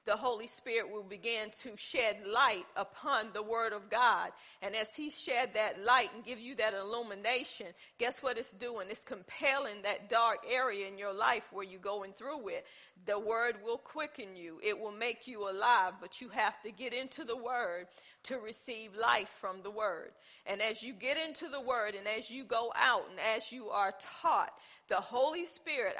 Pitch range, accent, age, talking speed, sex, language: 210-260 Hz, American, 40-59, 195 wpm, female, English